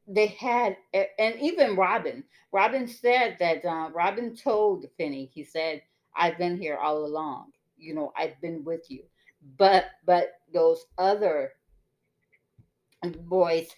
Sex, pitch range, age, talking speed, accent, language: female, 165-235 Hz, 40-59, 130 wpm, American, English